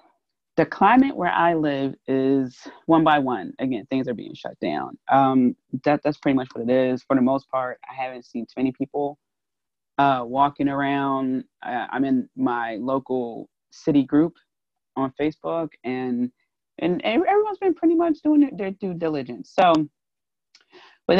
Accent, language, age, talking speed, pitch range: American, English, 30-49, 165 wpm, 135-190 Hz